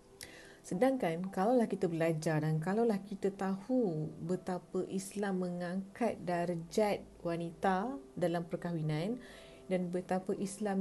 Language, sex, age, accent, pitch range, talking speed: English, female, 30-49, Malaysian, 170-210 Hz, 100 wpm